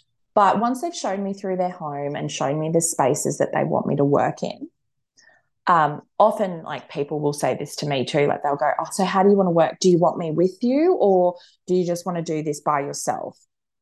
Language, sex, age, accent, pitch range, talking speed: English, female, 20-39, Australian, 155-180 Hz, 250 wpm